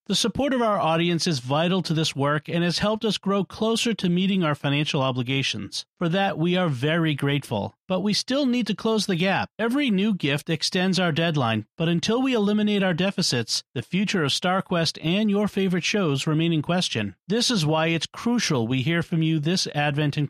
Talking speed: 205 wpm